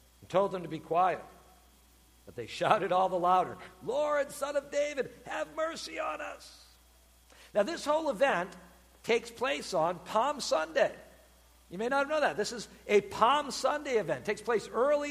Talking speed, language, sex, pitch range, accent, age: 170 wpm, English, male, 180-265 Hz, American, 60-79